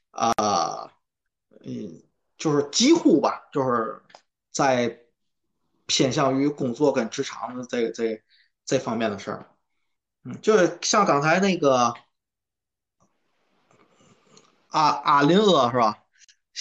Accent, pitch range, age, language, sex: native, 115-150 Hz, 20-39, Chinese, male